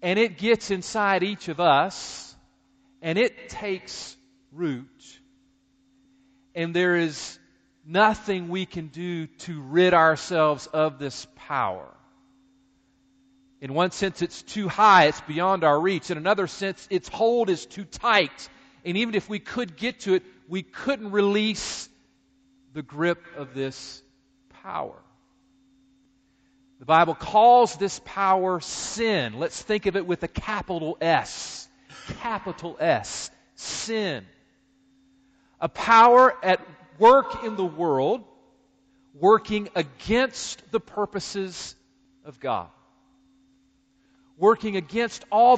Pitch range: 170-245 Hz